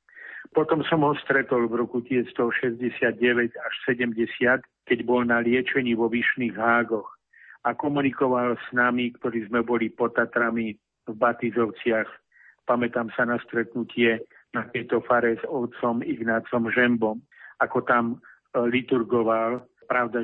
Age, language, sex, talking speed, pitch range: 50-69, Slovak, male, 120 wpm, 115-125 Hz